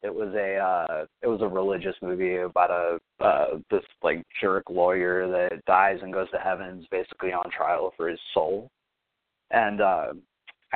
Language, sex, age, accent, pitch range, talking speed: English, male, 20-39, American, 95-125 Hz, 165 wpm